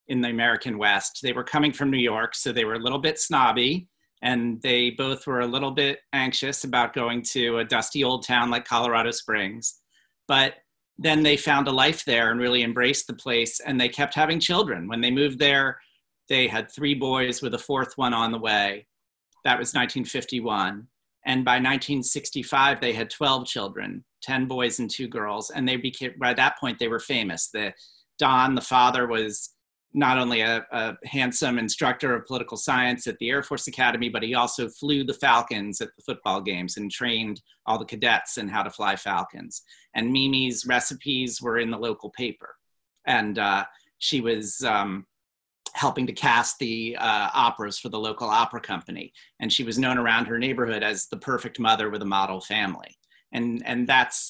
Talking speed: 190 wpm